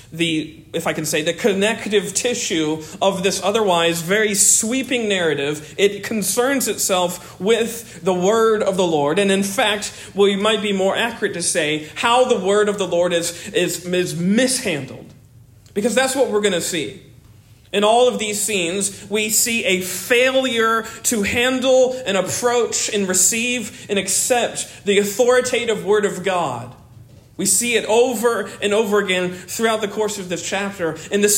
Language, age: English, 40-59